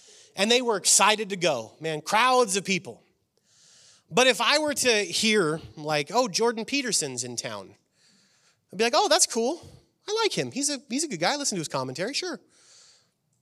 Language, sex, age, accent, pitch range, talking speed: English, male, 30-49, American, 145-240 Hz, 190 wpm